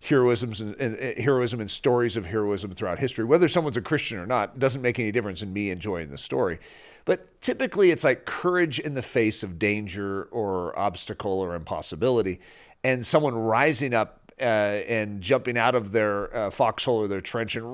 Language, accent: English, American